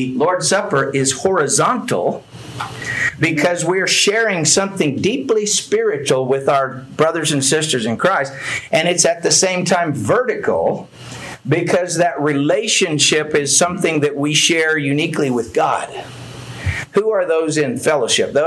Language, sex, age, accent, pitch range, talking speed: English, male, 50-69, American, 140-205 Hz, 130 wpm